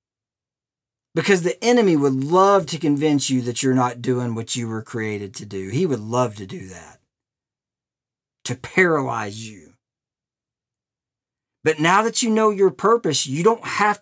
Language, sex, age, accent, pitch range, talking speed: English, male, 40-59, American, 125-185 Hz, 160 wpm